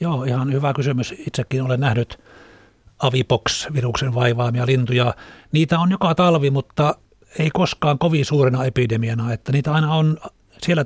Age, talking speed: 60-79, 140 wpm